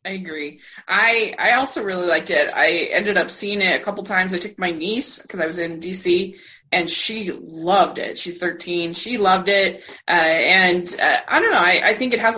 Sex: female